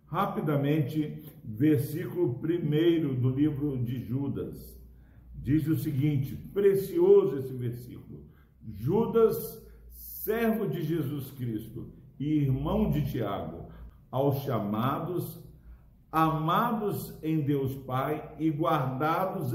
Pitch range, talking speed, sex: 125-155 Hz, 90 wpm, male